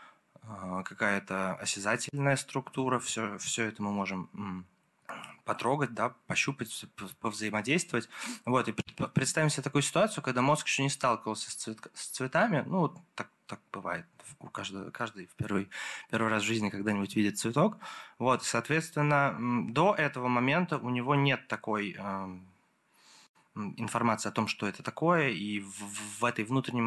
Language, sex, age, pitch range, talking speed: Russian, male, 20-39, 110-145 Hz, 145 wpm